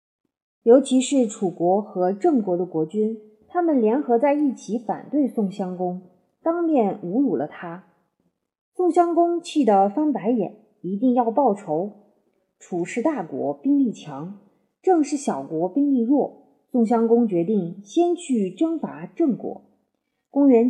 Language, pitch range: Chinese, 195-275 Hz